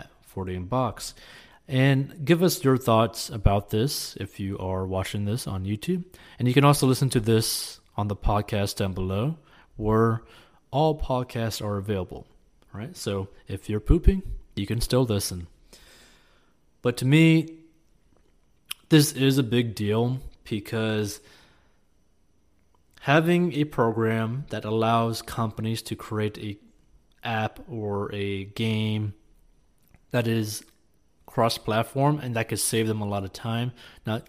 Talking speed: 135 wpm